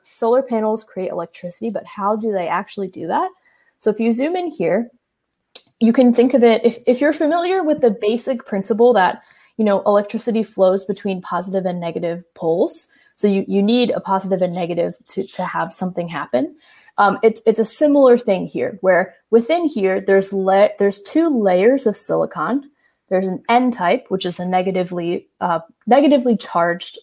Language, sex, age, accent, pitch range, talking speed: English, female, 20-39, American, 190-240 Hz, 180 wpm